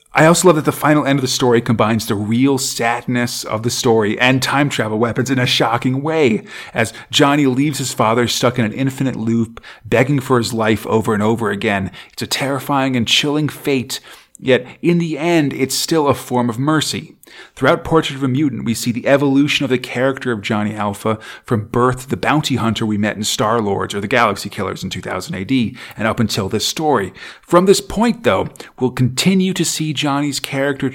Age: 40-59